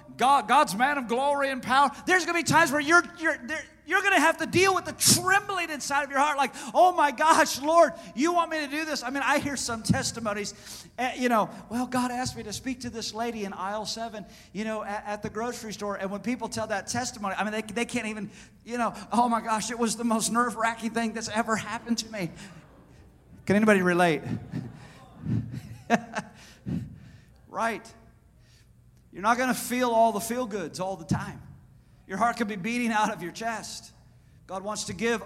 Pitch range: 205-260 Hz